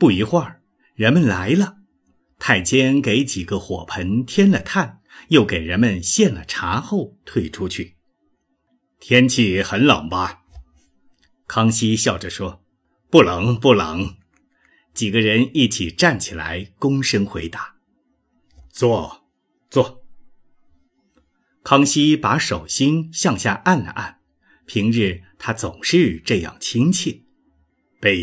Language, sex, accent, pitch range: Chinese, male, native, 90-135 Hz